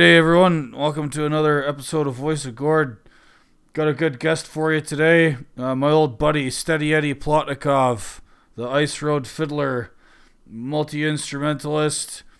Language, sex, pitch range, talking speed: English, male, 130-150 Hz, 140 wpm